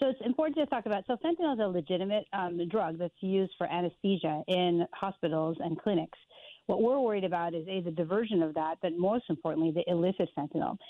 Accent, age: American, 40-59